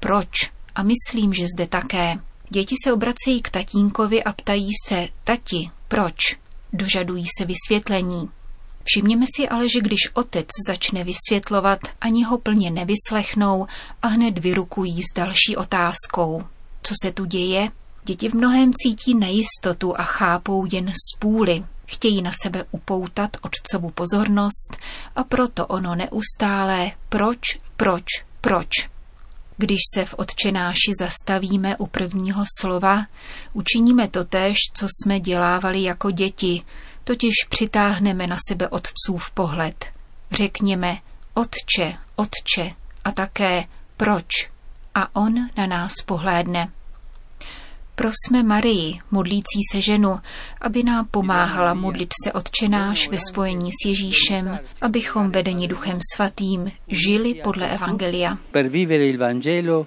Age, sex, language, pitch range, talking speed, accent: 30-49, female, Czech, 180-210 Hz, 120 wpm, native